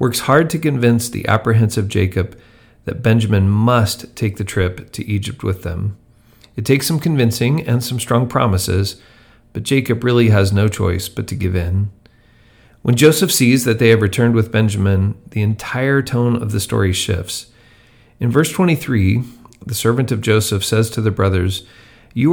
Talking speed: 170 wpm